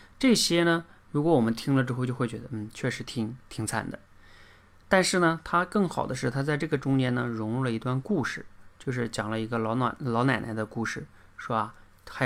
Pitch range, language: 110-130 Hz, Chinese